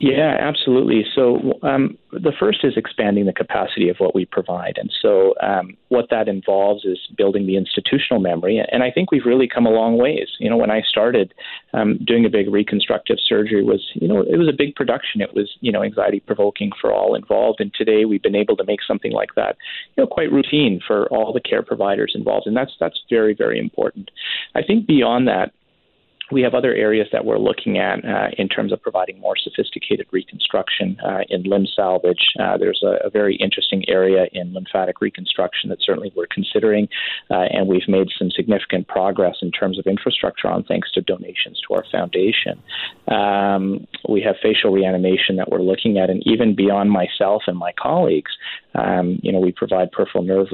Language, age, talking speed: English, 30-49, 200 wpm